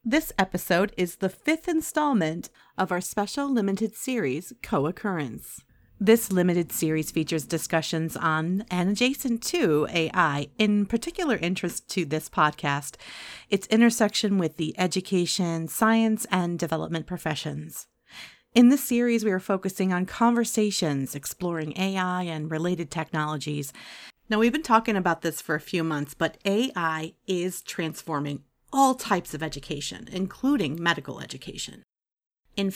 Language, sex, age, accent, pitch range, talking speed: English, female, 40-59, American, 165-225 Hz, 130 wpm